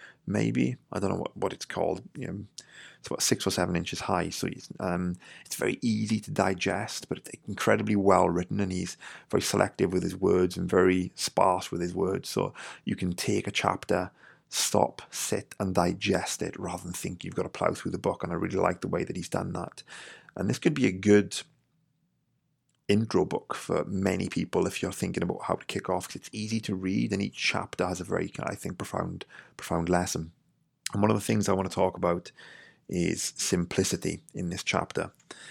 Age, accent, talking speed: 30-49, British, 210 wpm